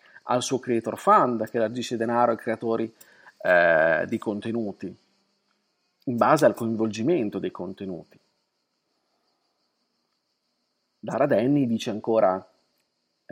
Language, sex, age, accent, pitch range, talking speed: Italian, male, 40-59, native, 115-150 Hz, 100 wpm